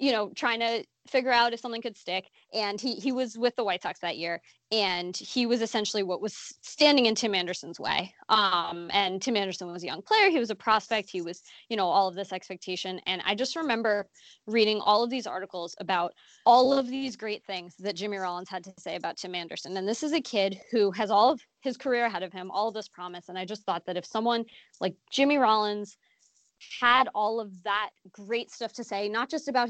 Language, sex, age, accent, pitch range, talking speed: English, female, 20-39, American, 190-235 Hz, 230 wpm